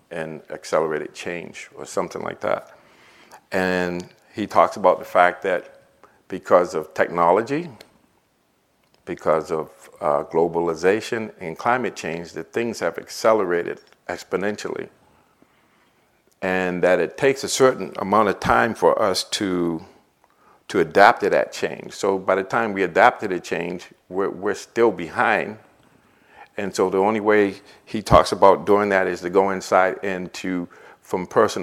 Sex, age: male, 50-69